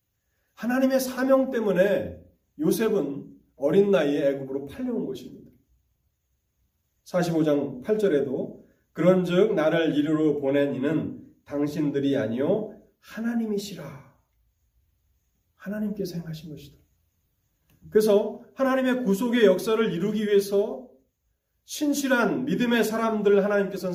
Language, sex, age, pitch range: Korean, male, 30-49, 150-220 Hz